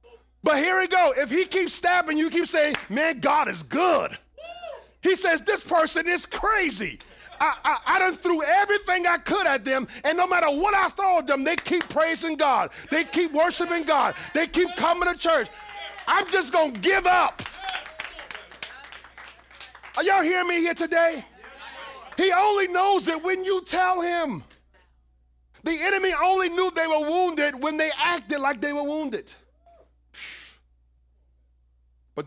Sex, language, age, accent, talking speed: male, English, 40-59, American, 160 wpm